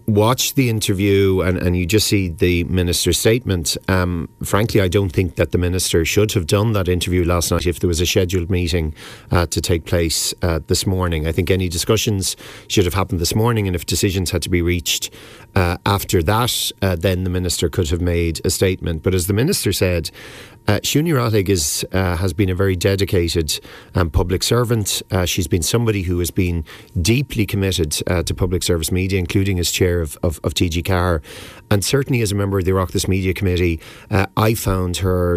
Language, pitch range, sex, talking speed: English, 90-105 Hz, male, 205 wpm